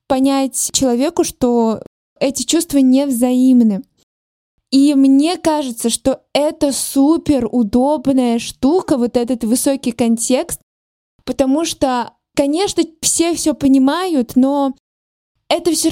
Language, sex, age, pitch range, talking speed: Russian, female, 20-39, 245-290 Hz, 105 wpm